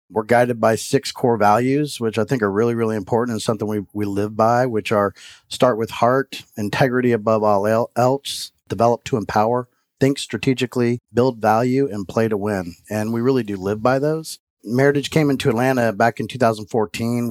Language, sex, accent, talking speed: English, male, American, 185 wpm